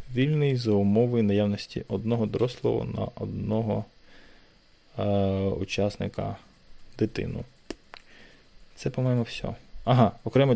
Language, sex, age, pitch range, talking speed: Ukrainian, male, 20-39, 100-125 Hz, 90 wpm